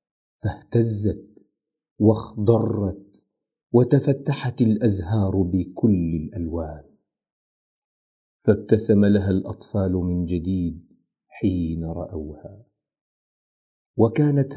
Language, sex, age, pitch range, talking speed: Arabic, male, 40-59, 90-115 Hz, 60 wpm